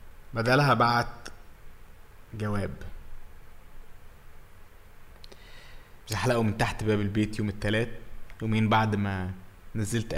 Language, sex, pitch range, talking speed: Arabic, male, 90-115 Hz, 90 wpm